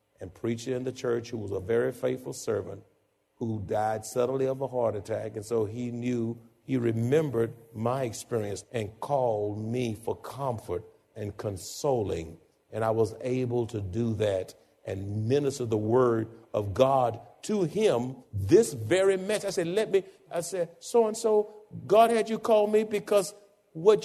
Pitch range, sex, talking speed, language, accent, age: 115-195 Hz, male, 160 wpm, English, American, 50-69